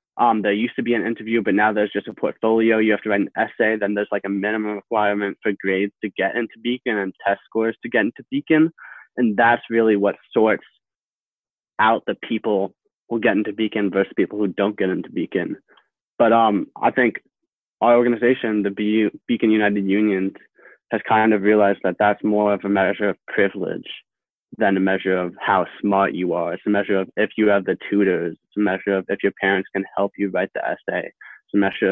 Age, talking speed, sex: 20-39, 210 wpm, male